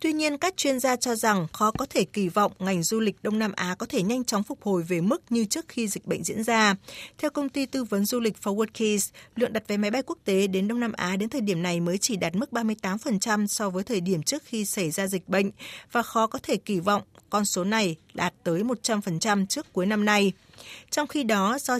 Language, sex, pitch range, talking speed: Vietnamese, female, 195-250 Hz, 255 wpm